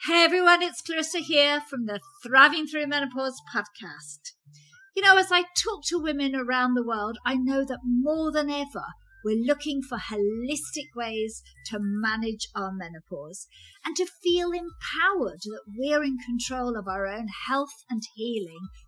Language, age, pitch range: English, 50-69, 210-290 Hz